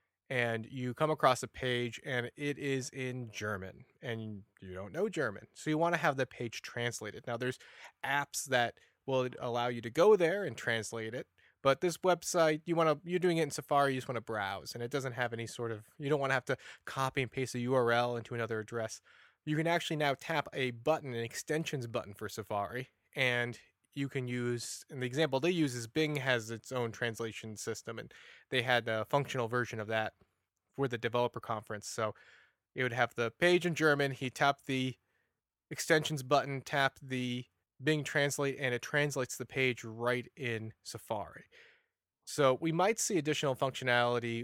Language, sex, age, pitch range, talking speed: English, male, 20-39, 115-145 Hz, 200 wpm